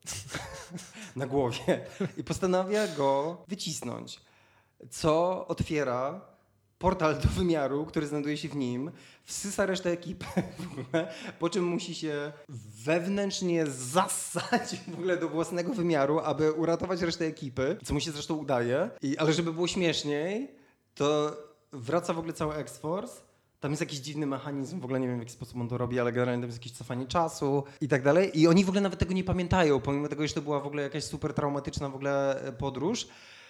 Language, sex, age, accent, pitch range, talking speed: Polish, male, 20-39, native, 135-170 Hz, 170 wpm